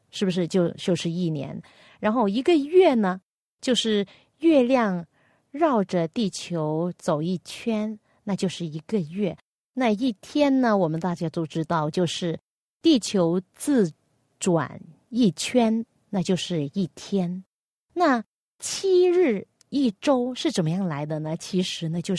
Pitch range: 170-245 Hz